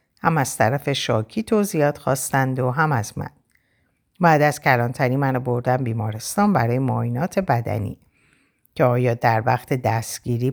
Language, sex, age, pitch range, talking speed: Persian, female, 50-69, 120-170 Hz, 135 wpm